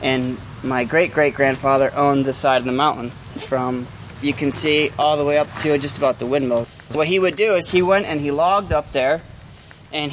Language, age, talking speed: English, 20-39, 220 wpm